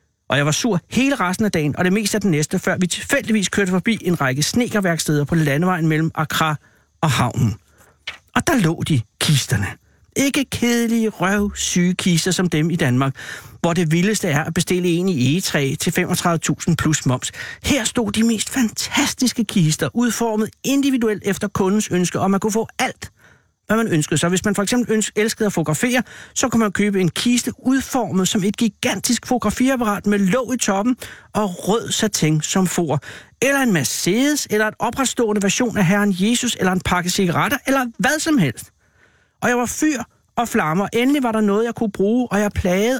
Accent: native